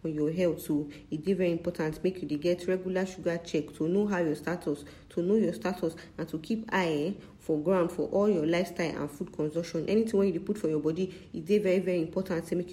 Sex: female